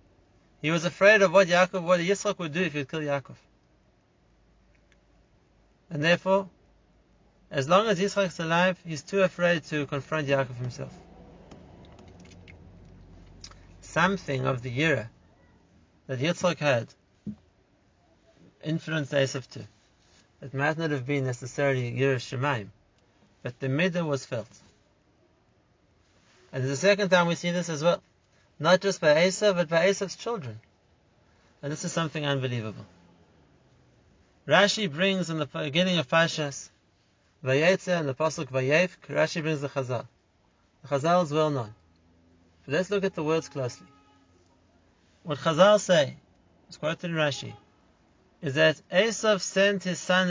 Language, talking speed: English, 140 wpm